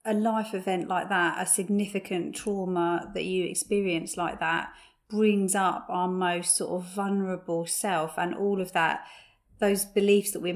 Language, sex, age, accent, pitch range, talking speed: English, female, 30-49, British, 180-215 Hz, 165 wpm